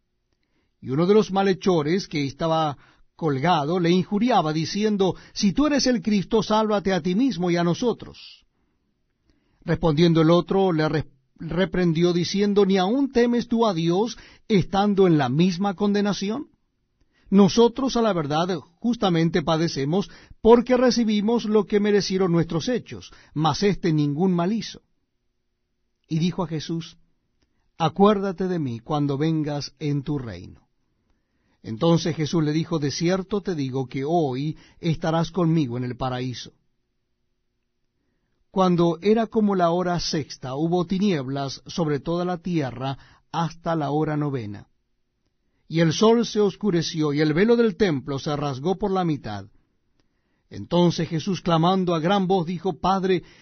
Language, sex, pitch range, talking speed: Spanish, male, 150-200 Hz, 140 wpm